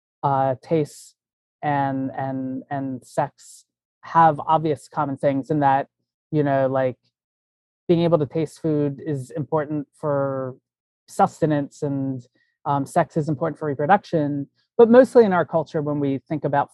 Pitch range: 130-155 Hz